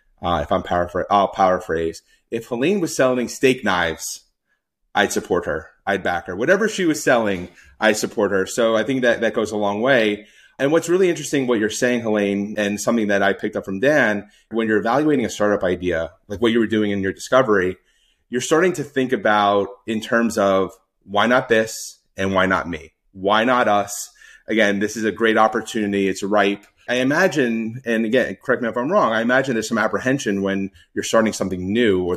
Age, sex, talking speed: 30-49, male, 205 wpm